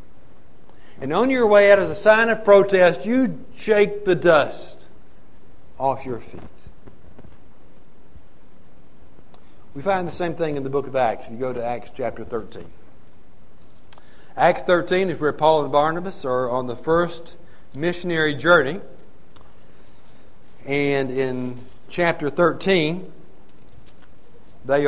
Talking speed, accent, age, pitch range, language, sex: 125 wpm, American, 60-79, 120-165 Hz, English, male